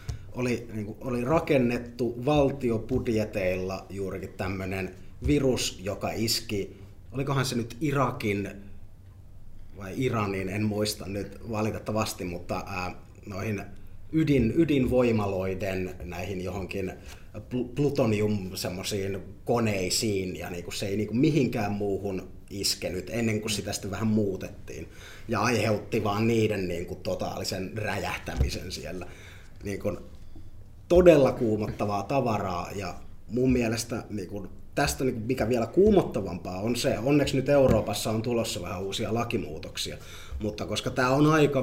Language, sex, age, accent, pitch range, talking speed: Finnish, male, 30-49, native, 95-120 Hz, 115 wpm